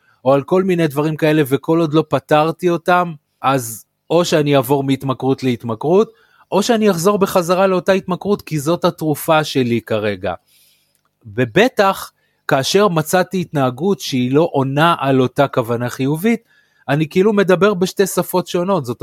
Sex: male